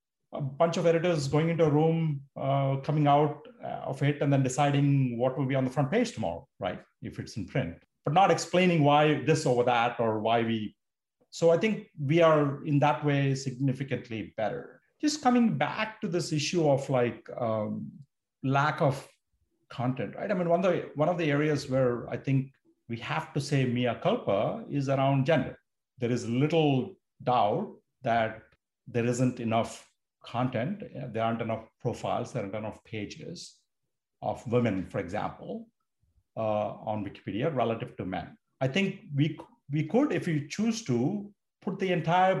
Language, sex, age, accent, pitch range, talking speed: English, male, 40-59, Indian, 120-160 Hz, 170 wpm